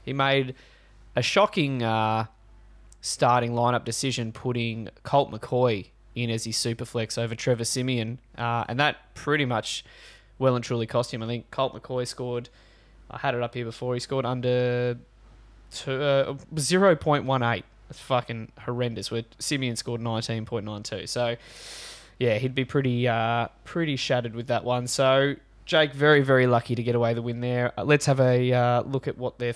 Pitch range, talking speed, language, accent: 115-135 Hz, 165 wpm, English, Australian